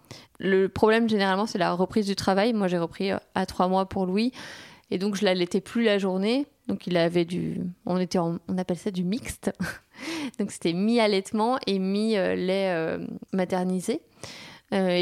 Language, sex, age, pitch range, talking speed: French, female, 20-39, 180-220 Hz, 180 wpm